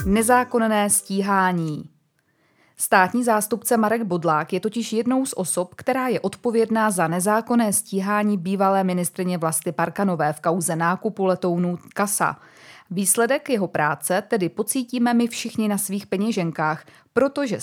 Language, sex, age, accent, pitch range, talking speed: Czech, female, 20-39, native, 170-225 Hz, 125 wpm